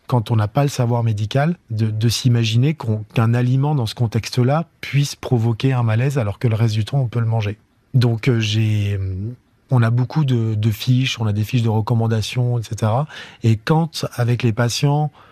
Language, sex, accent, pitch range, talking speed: French, male, French, 115-140 Hz, 190 wpm